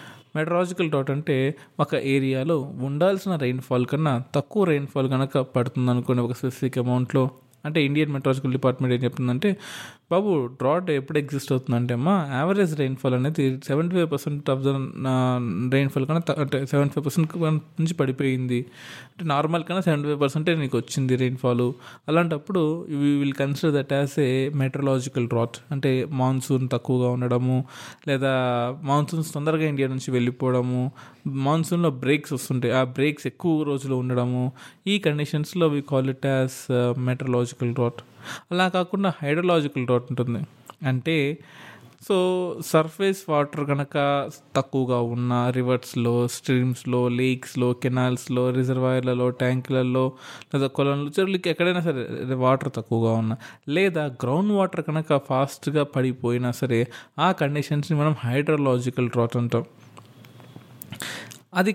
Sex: male